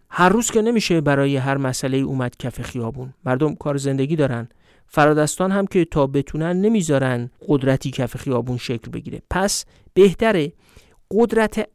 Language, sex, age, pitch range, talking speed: Persian, male, 50-69, 125-170 Hz, 145 wpm